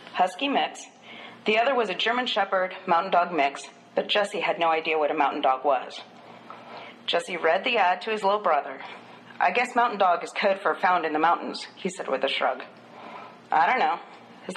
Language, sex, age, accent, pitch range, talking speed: English, female, 40-59, American, 165-220 Hz, 200 wpm